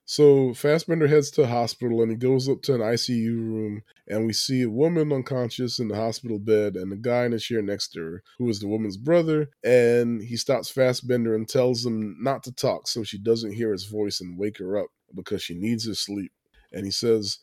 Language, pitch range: English, 105-130 Hz